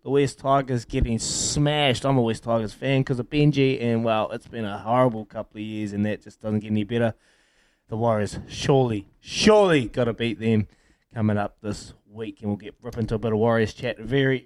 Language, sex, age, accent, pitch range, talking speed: English, male, 20-39, Australian, 115-140 Hz, 210 wpm